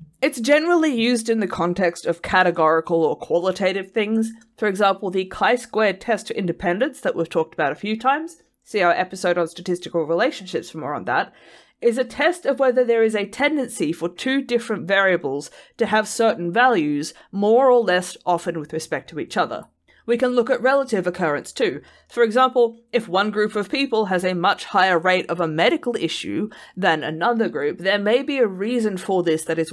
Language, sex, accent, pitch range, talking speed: English, female, Australian, 170-235 Hz, 195 wpm